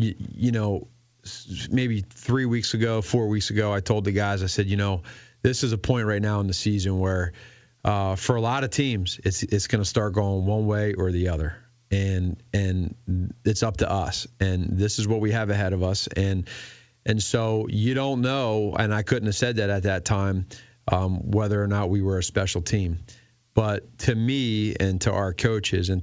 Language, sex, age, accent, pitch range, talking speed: English, male, 40-59, American, 95-115 Hz, 210 wpm